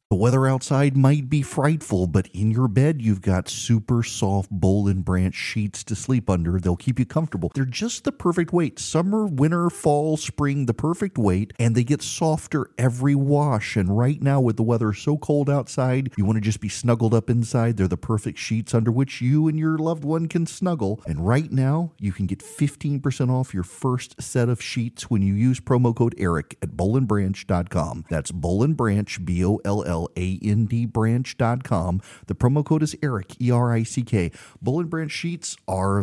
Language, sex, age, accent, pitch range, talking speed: English, male, 40-59, American, 95-140 Hz, 185 wpm